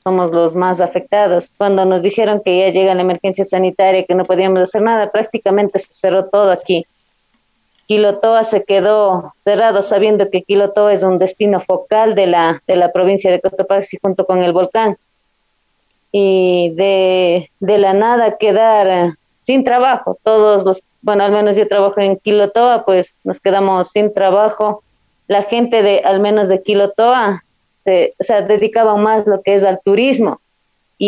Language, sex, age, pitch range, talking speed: Spanish, female, 30-49, 185-210 Hz, 160 wpm